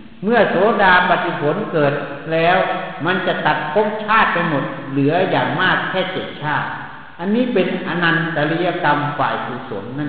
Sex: male